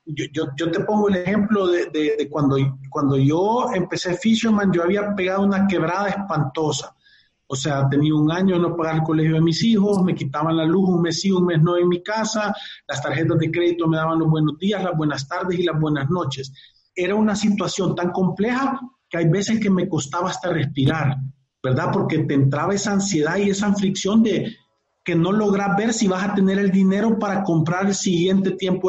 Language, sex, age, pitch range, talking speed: Spanish, male, 40-59, 155-195 Hz, 210 wpm